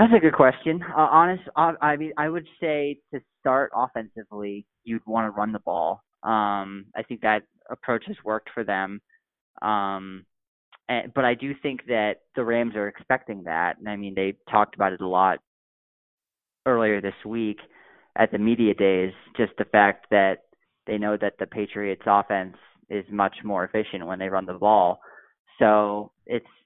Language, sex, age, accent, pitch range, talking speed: English, male, 30-49, American, 100-120 Hz, 180 wpm